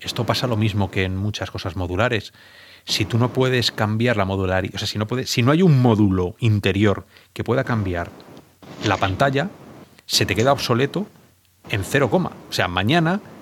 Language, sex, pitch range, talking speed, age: Spanish, male, 105-145 Hz, 180 wpm, 30-49